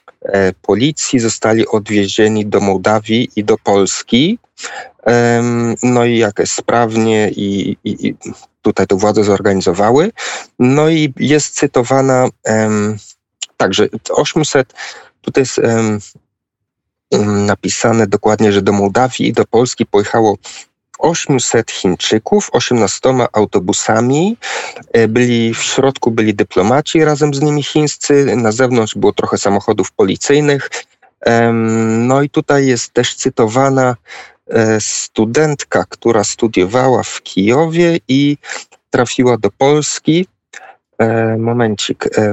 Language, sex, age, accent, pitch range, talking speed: Polish, male, 40-59, native, 110-135 Hz, 100 wpm